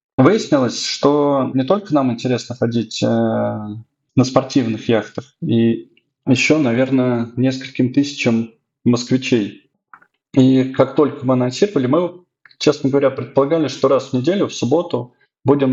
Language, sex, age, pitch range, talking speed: Russian, male, 20-39, 115-135 Hz, 125 wpm